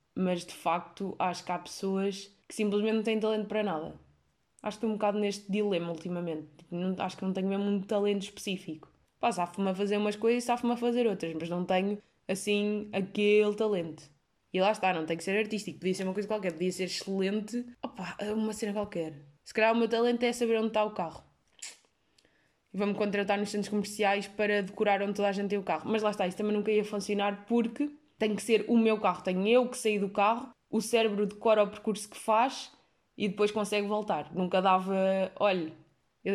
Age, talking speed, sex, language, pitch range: 20-39, 215 wpm, female, Portuguese, 190-225 Hz